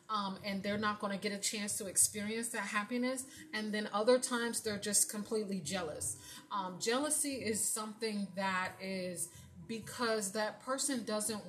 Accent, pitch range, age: American, 195-230 Hz, 30-49